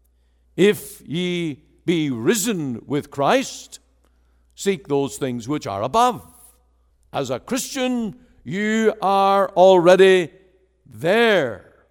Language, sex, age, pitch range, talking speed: English, male, 60-79, 100-155 Hz, 95 wpm